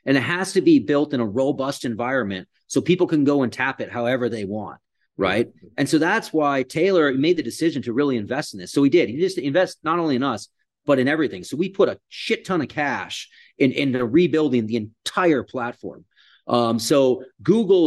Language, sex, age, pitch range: English, male, 30-49, 115-155 Hz